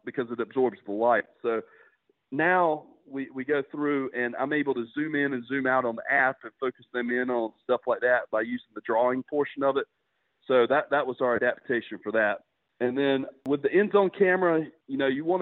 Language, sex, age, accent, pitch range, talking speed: English, male, 40-59, American, 120-140 Hz, 220 wpm